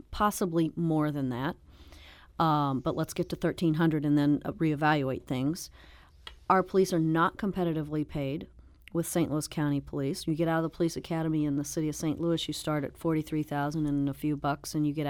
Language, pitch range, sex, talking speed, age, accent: English, 140-170 Hz, female, 195 wpm, 40-59, American